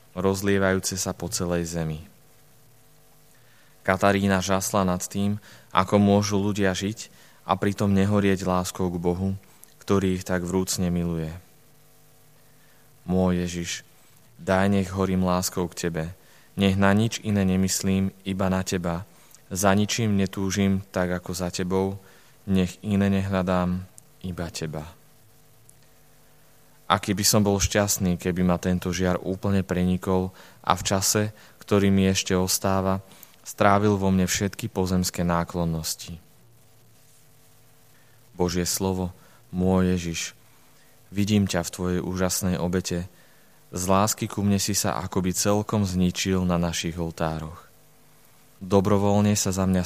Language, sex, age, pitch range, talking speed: Slovak, male, 20-39, 90-100 Hz, 125 wpm